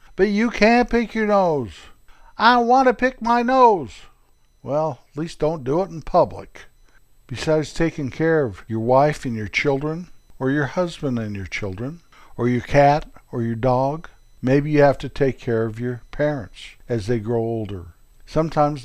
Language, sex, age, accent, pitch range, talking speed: English, male, 60-79, American, 120-150 Hz, 175 wpm